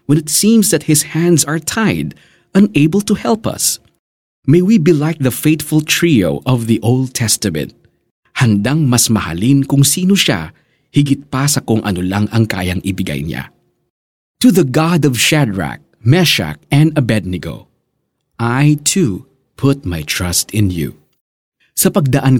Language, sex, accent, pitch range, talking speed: Filipino, male, native, 110-165 Hz, 150 wpm